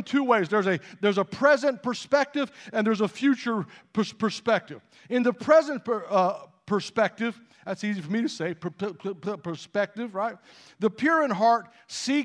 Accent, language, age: American, English, 50-69